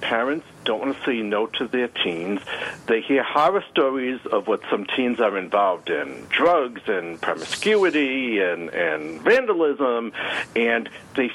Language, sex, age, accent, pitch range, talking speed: English, male, 60-79, American, 110-150 Hz, 150 wpm